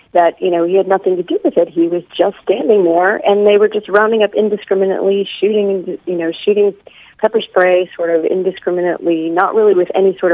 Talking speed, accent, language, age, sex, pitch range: 210 wpm, American, English, 40-59, female, 165-200 Hz